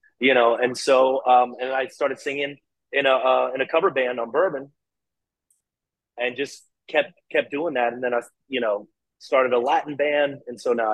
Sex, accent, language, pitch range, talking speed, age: male, American, English, 120-145 Hz, 195 wpm, 30-49